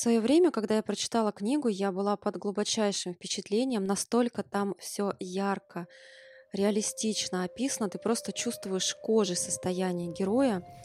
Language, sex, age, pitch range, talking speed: Russian, female, 20-39, 185-225 Hz, 135 wpm